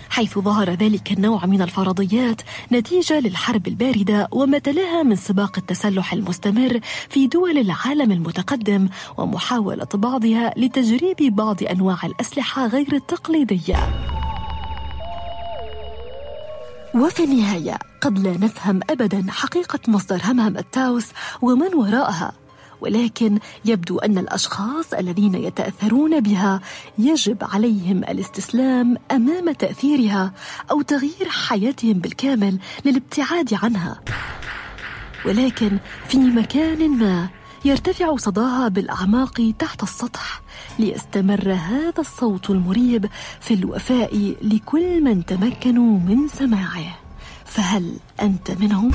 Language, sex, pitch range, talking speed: Arabic, female, 195-265 Hz, 95 wpm